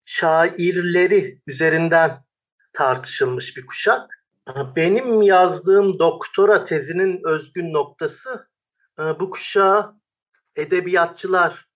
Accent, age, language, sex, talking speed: native, 50-69, Turkish, male, 70 wpm